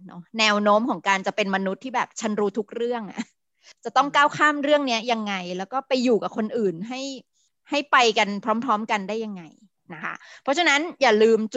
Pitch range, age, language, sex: 200-260 Hz, 20-39, Thai, female